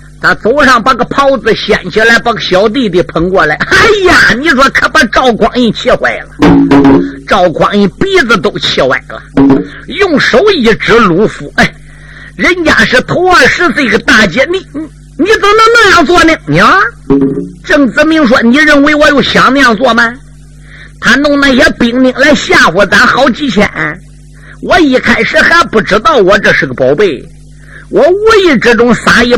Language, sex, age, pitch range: Chinese, male, 50-69, 170-285 Hz